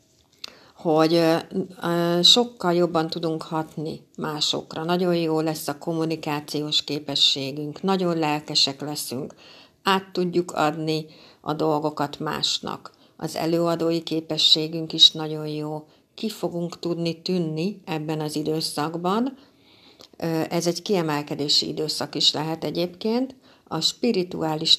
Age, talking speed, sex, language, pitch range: 60-79, 105 wpm, female, Hungarian, 155-175 Hz